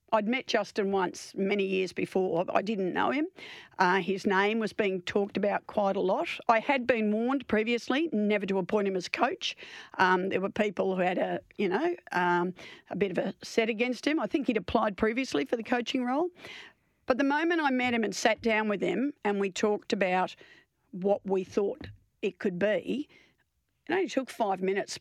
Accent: Australian